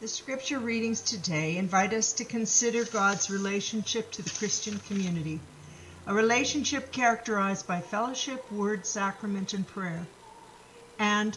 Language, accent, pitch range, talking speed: English, American, 185-230 Hz, 125 wpm